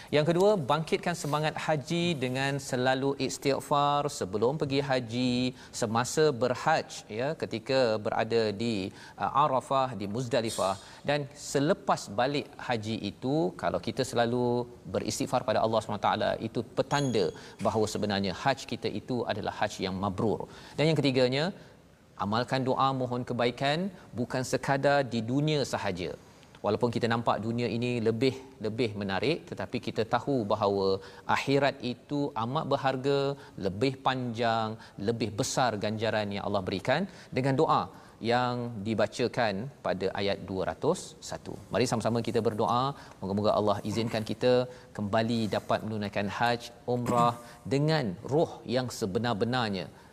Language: Malayalam